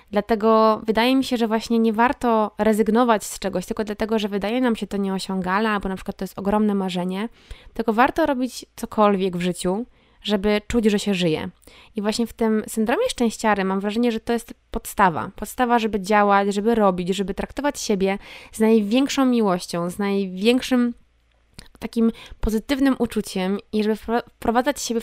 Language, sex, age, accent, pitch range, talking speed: Polish, female, 20-39, native, 205-240 Hz, 170 wpm